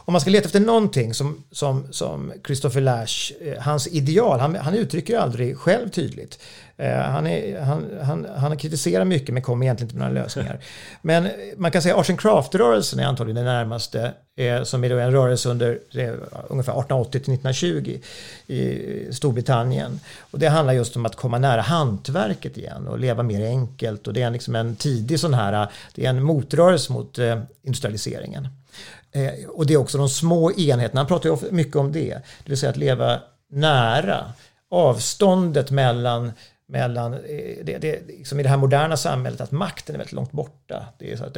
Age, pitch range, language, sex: 50-69, 125-155 Hz, English, male